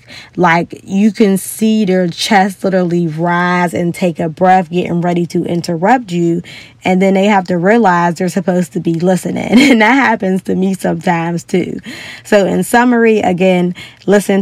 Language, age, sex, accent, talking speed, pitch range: English, 20-39, female, American, 165 wpm, 170-200 Hz